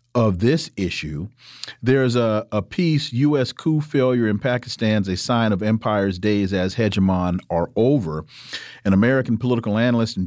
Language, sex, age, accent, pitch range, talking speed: English, male, 40-59, American, 110-140 Hz, 150 wpm